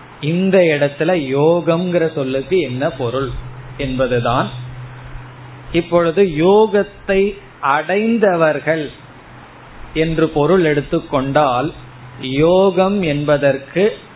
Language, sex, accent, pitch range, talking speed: Tamil, male, native, 130-170 Hz, 65 wpm